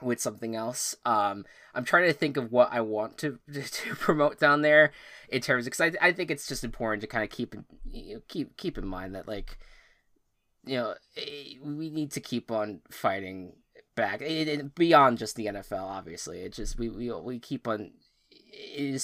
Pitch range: 105-130 Hz